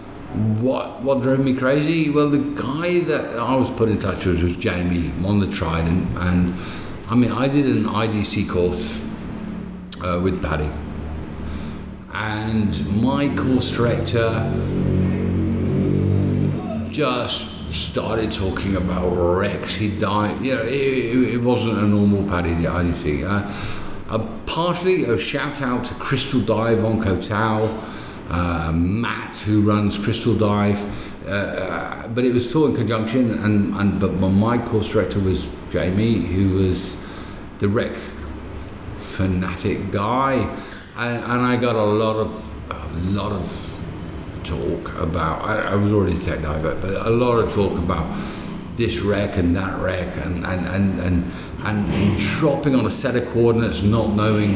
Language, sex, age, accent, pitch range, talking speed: English, male, 50-69, British, 90-115 Hz, 155 wpm